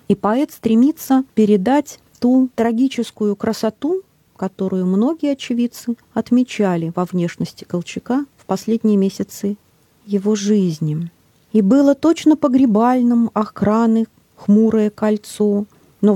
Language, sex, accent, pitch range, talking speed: Russian, female, native, 185-230 Hz, 100 wpm